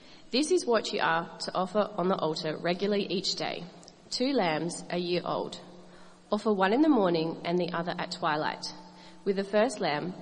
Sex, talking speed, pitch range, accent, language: female, 190 wpm, 170-200 Hz, Australian, English